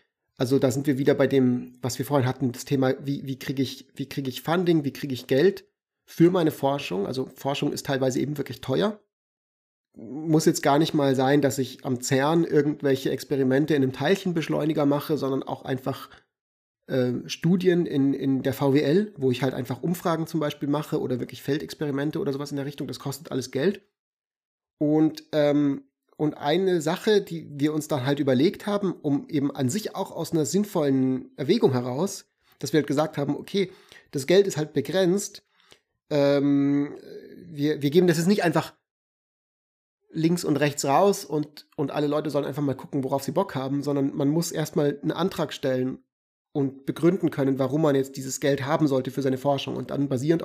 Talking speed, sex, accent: 185 wpm, male, German